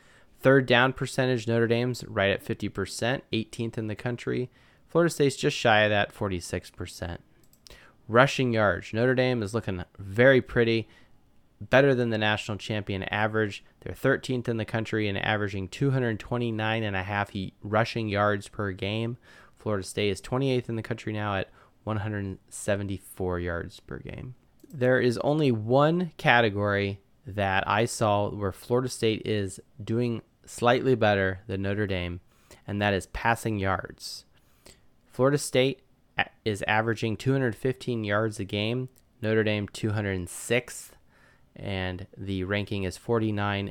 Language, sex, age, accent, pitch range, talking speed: English, male, 20-39, American, 100-125 Hz, 135 wpm